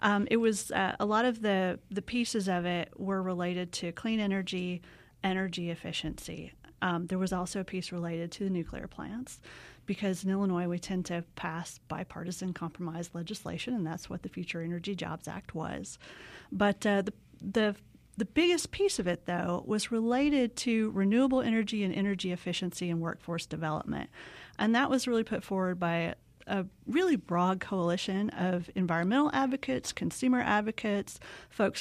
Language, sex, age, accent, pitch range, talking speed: English, female, 40-59, American, 175-220 Hz, 165 wpm